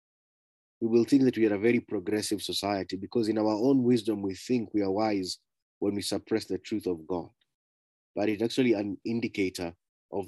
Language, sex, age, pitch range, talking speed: English, male, 30-49, 95-115 Hz, 195 wpm